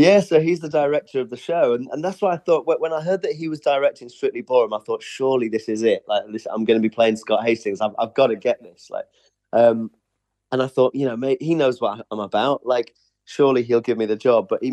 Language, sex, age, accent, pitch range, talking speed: English, male, 30-49, British, 110-140 Hz, 270 wpm